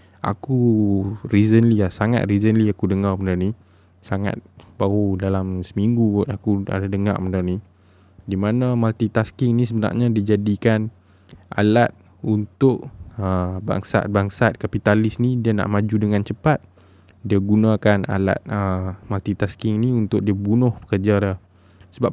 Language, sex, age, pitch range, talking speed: Malay, male, 20-39, 95-120 Hz, 125 wpm